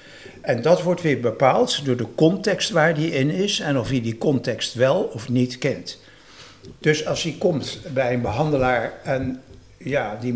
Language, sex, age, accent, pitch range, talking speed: Dutch, male, 60-79, Dutch, 125-155 Hz, 180 wpm